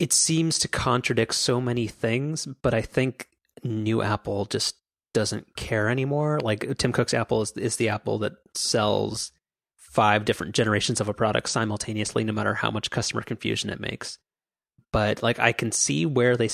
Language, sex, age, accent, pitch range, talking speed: English, male, 30-49, American, 105-120 Hz, 175 wpm